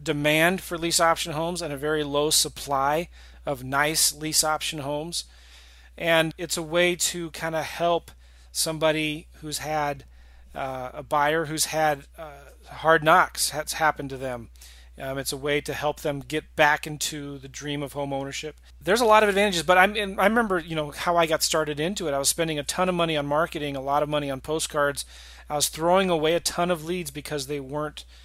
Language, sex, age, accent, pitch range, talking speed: English, male, 40-59, American, 140-160 Hz, 205 wpm